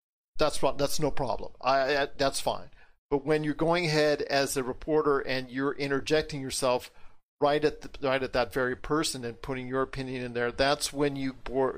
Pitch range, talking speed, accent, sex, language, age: 130-155 Hz, 200 wpm, American, male, English, 50-69